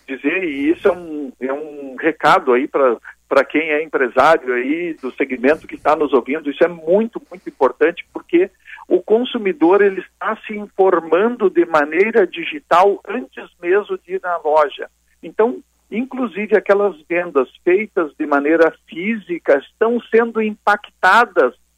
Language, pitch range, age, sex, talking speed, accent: Portuguese, 165-230 Hz, 50-69, male, 145 wpm, Brazilian